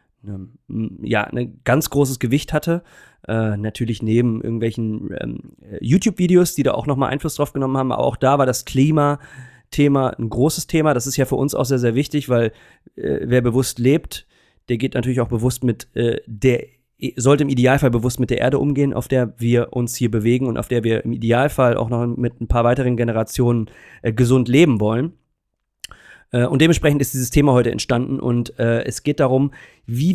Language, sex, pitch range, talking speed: German, male, 115-140 Hz, 190 wpm